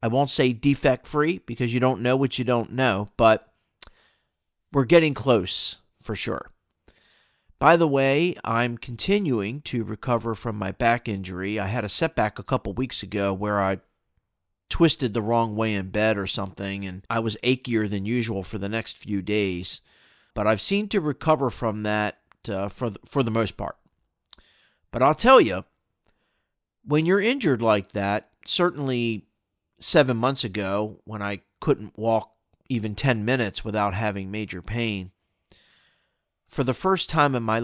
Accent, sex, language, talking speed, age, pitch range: American, male, English, 160 wpm, 40-59, 100-130 Hz